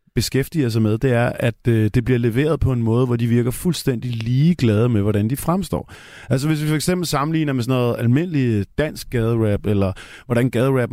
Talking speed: 205 wpm